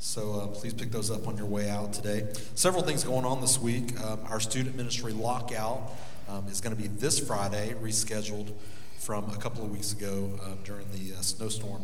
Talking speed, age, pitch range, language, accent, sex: 210 wpm, 40-59, 105-125 Hz, English, American, male